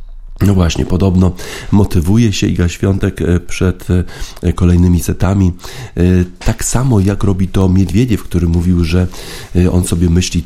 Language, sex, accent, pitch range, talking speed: Polish, male, native, 85-95 Hz, 125 wpm